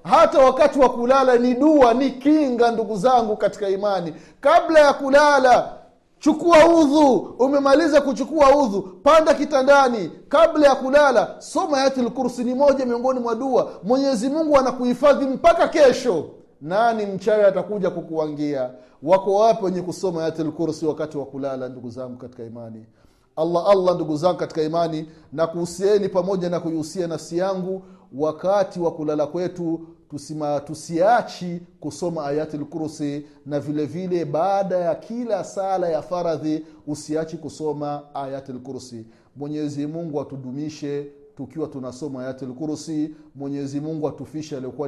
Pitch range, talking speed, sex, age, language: 150-235 Hz, 130 wpm, male, 30-49, Swahili